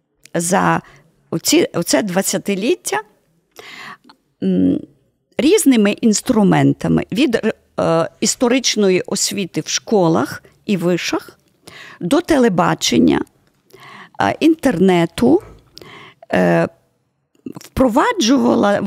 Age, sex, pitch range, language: 40-59, female, 195-295 Hz, Ukrainian